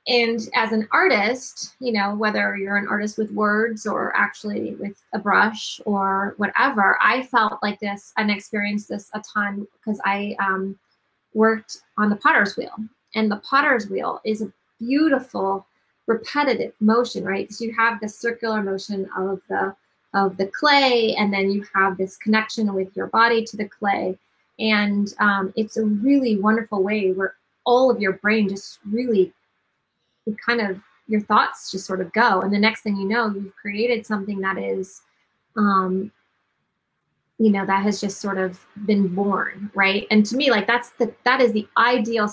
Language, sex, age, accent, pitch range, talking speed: English, female, 20-39, American, 195-220 Hz, 175 wpm